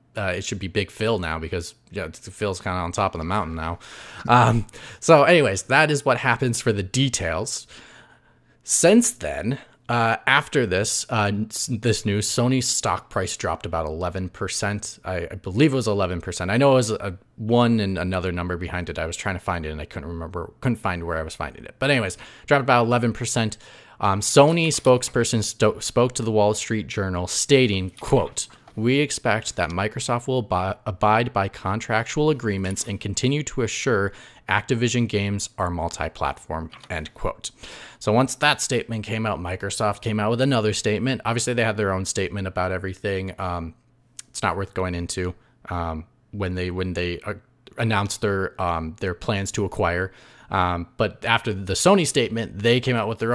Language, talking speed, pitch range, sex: English, 190 wpm, 95-120 Hz, male